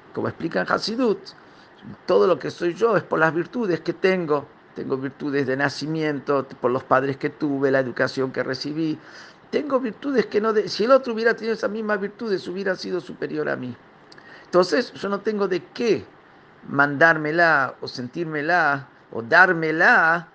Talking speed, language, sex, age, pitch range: 170 wpm, Spanish, male, 50-69, 145-215 Hz